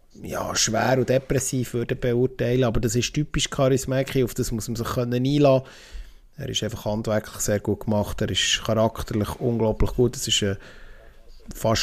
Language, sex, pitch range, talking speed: German, male, 110-130 Hz, 160 wpm